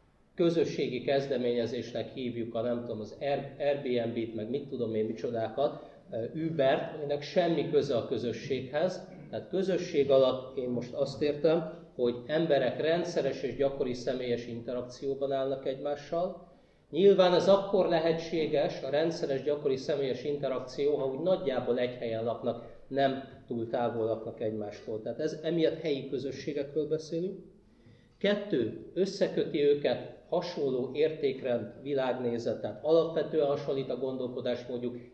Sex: male